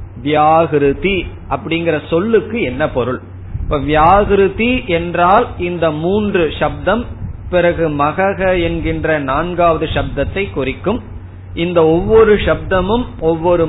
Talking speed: 85 wpm